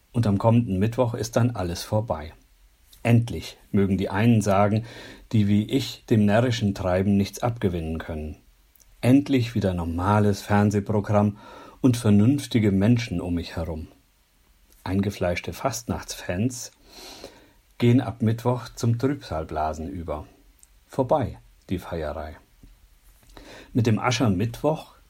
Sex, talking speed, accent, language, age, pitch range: male, 110 wpm, German, German, 50-69, 90-120 Hz